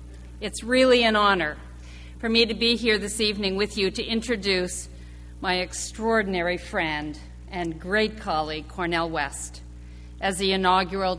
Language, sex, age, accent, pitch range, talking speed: English, female, 50-69, American, 155-215 Hz, 140 wpm